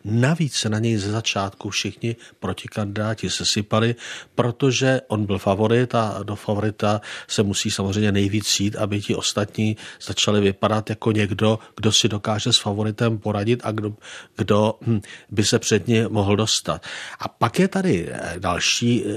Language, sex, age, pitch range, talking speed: Czech, male, 50-69, 105-120 Hz, 150 wpm